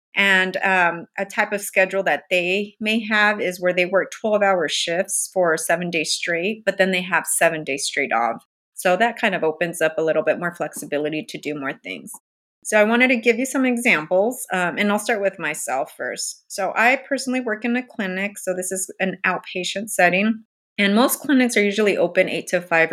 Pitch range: 170-210 Hz